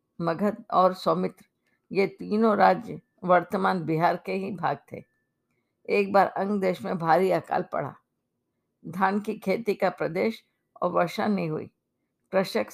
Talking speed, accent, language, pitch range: 140 wpm, native, Hindi, 175-205 Hz